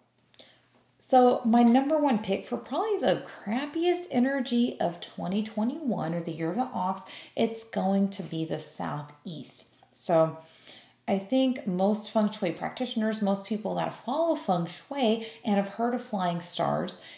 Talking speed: 150 wpm